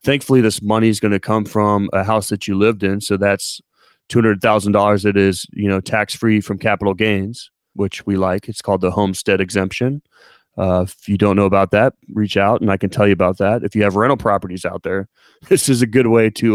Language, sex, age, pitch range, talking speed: English, male, 30-49, 100-115 Hz, 215 wpm